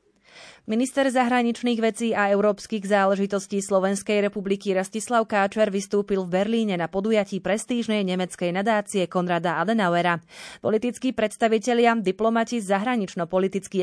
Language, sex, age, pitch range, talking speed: Slovak, female, 30-49, 185-225 Hz, 105 wpm